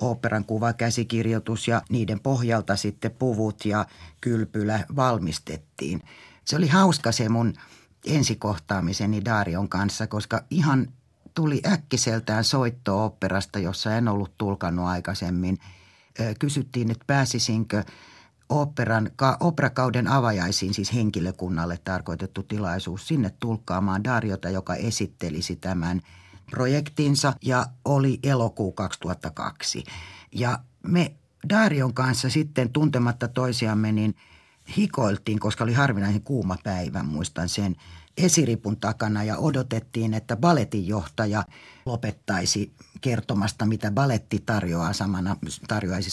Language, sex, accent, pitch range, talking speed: Finnish, male, native, 95-125 Hz, 105 wpm